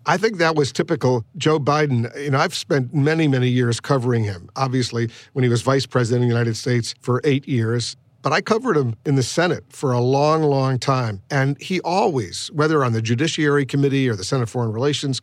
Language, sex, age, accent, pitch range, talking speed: English, male, 50-69, American, 120-140 Hz, 215 wpm